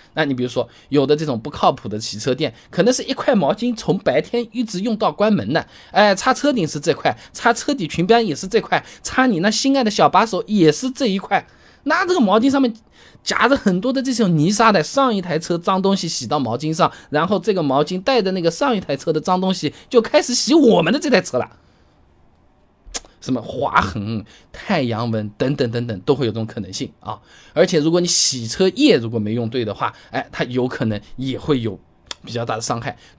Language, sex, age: Chinese, male, 20-39